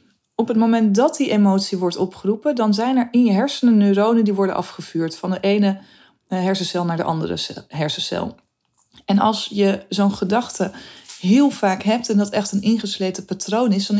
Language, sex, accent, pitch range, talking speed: Dutch, female, Dutch, 190-225 Hz, 180 wpm